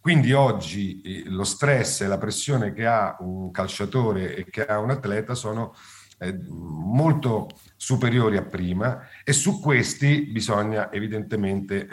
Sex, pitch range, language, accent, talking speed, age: male, 95-125 Hz, Italian, native, 130 wpm, 50-69